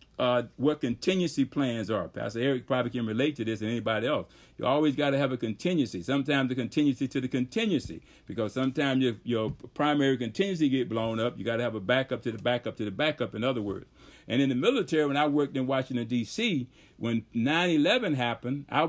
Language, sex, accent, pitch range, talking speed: English, male, American, 120-150 Hz, 210 wpm